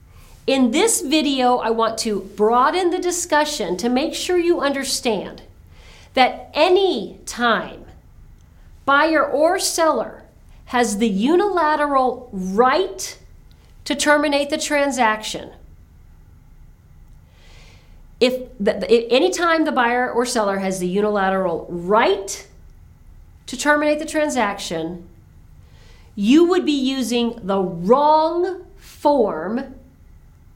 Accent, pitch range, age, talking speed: American, 205-305 Hz, 40-59, 100 wpm